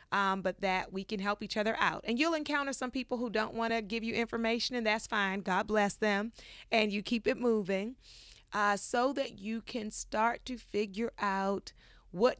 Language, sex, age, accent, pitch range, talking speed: English, female, 30-49, American, 195-240 Hz, 205 wpm